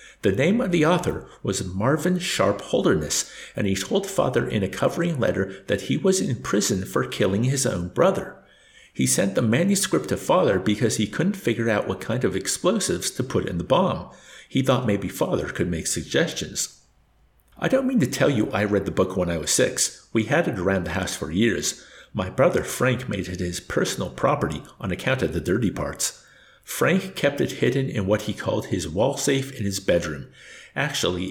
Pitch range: 95-135 Hz